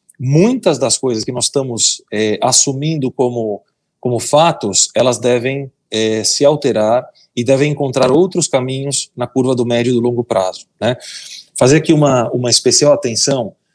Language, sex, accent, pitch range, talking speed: Portuguese, male, Brazilian, 115-145 Hz, 155 wpm